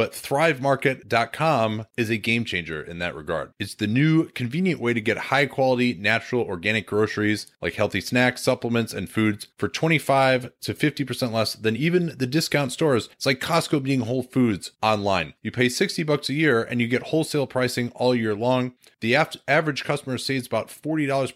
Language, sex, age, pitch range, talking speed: English, male, 30-49, 115-150 Hz, 180 wpm